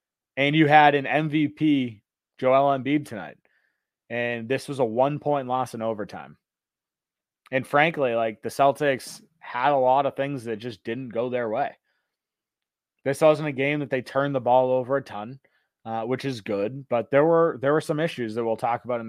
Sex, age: male, 30-49